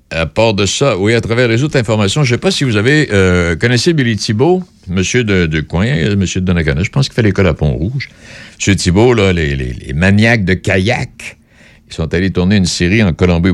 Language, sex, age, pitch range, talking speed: French, male, 60-79, 80-110 Hz, 240 wpm